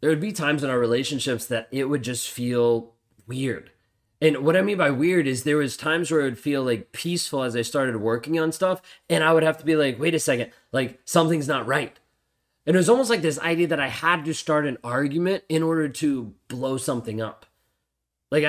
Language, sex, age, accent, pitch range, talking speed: English, male, 20-39, American, 120-155 Hz, 225 wpm